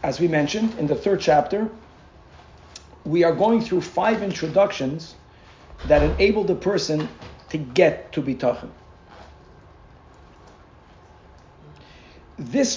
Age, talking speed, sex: 50-69, 105 wpm, male